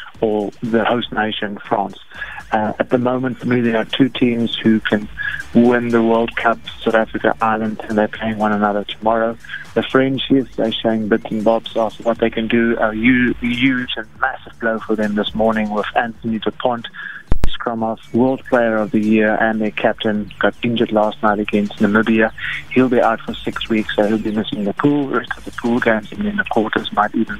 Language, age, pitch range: English, 30-49, 110-120 Hz